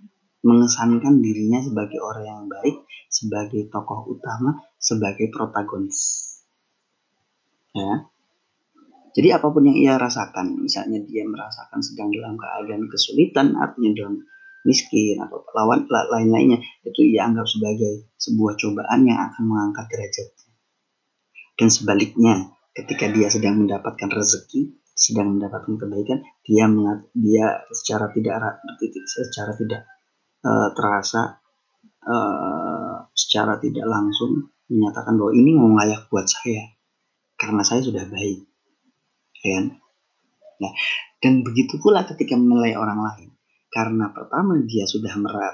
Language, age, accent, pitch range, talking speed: Indonesian, 30-49, native, 105-155 Hz, 115 wpm